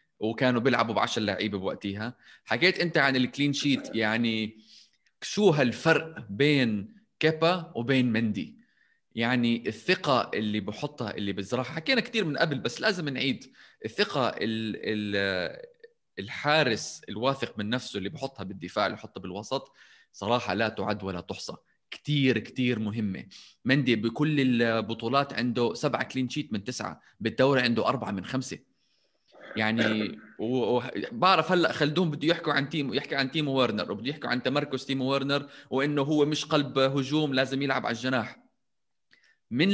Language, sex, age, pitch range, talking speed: Arabic, male, 20-39, 115-150 Hz, 140 wpm